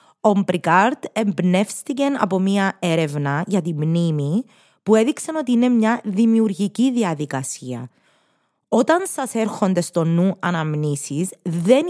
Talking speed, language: 110 wpm, Greek